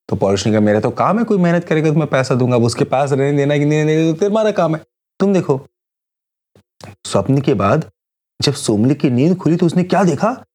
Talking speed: 205 wpm